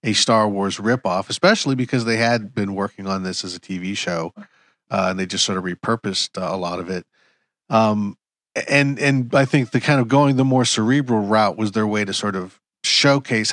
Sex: male